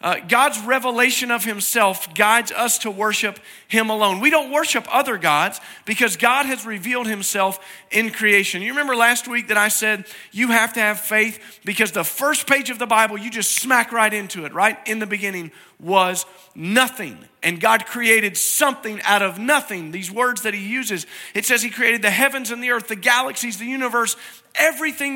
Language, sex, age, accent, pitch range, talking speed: English, male, 40-59, American, 175-240 Hz, 190 wpm